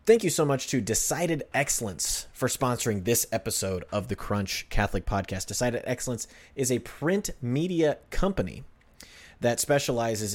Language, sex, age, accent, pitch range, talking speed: English, male, 30-49, American, 100-130 Hz, 145 wpm